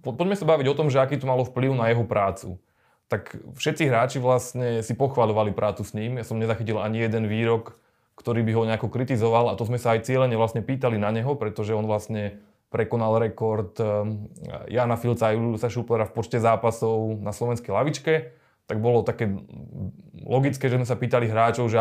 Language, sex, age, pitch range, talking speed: Slovak, male, 20-39, 115-130 Hz, 185 wpm